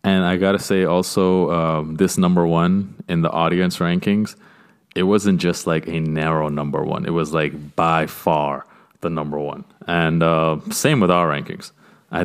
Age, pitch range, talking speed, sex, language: 30-49, 80-100 Hz, 175 wpm, male, English